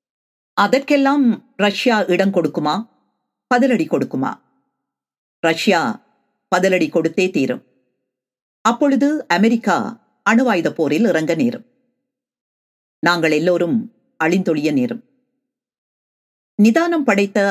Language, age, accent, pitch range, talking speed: Tamil, 50-69, native, 160-240 Hz, 80 wpm